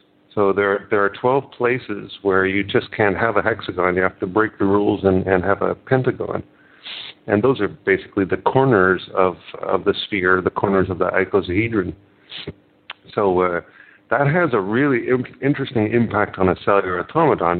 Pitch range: 95-110 Hz